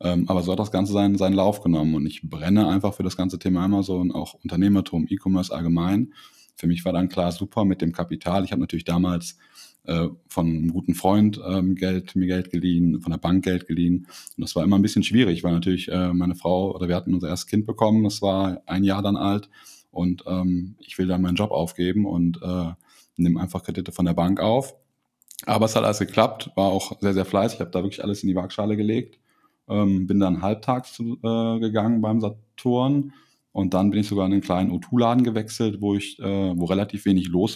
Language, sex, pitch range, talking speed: German, male, 85-100 Hz, 220 wpm